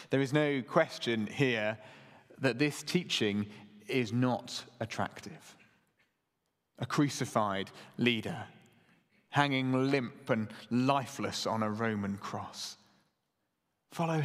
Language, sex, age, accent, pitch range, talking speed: English, male, 30-49, British, 135-180 Hz, 95 wpm